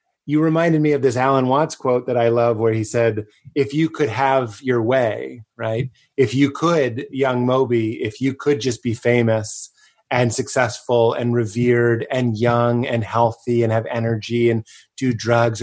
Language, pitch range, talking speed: English, 115-150 Hz, 175 wpm